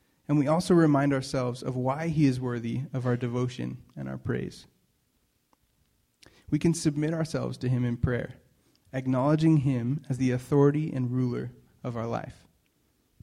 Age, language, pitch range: 30-49, English, 120-145 Hz